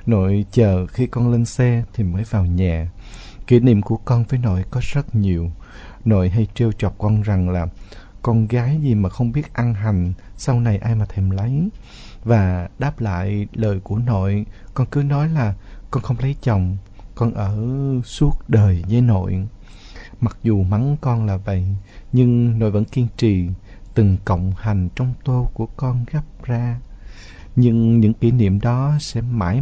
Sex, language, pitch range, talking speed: male, Vietnamese, 100-125 Hz, 175 wpm